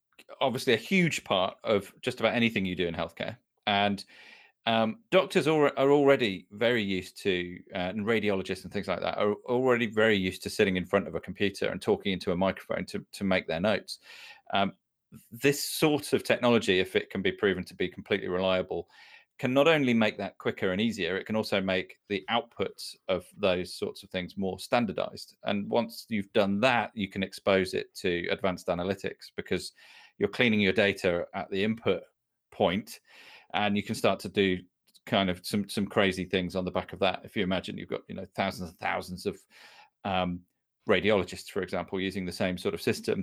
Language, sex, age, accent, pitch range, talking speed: English, male, 30-49, British, 95-135 Hz, 200 wpm